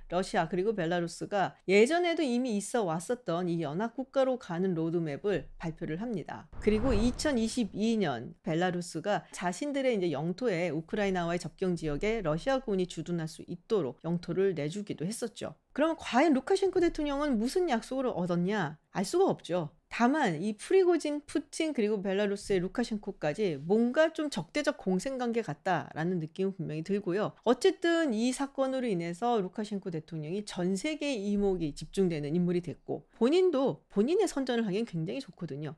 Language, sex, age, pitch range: Korean, female, 40-59, 175-250 Hz